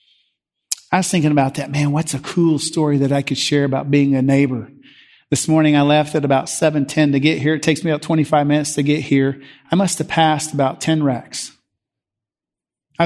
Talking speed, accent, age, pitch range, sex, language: 205 wpm, American, 40-59, 125-155 Hz, male, English